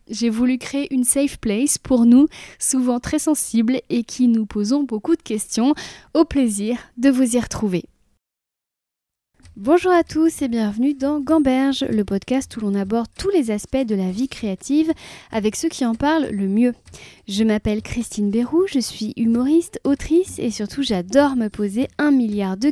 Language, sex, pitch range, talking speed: French, female, 210-280 Hz, 175 wpm